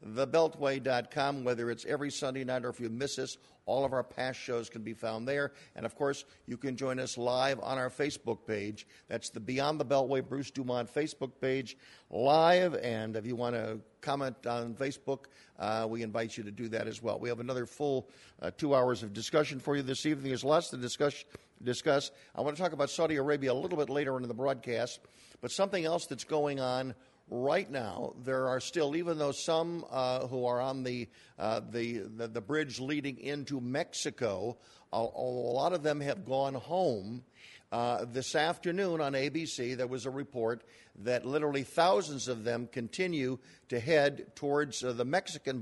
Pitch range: 120-145 Hz